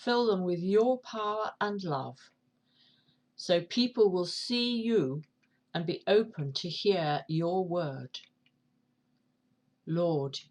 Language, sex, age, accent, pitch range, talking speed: English, female, 50-69, British, 160-220 Hz, 115 wpm